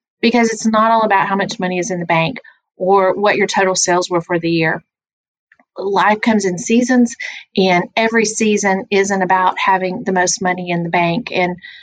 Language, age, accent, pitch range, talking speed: English, 30-49, American, 185-220 Hz, 195 wpm